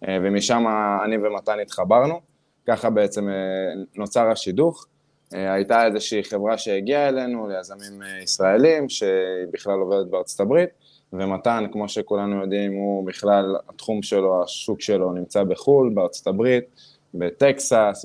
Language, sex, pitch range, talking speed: Hebrew, male, 100-115 Hz, 115 wpm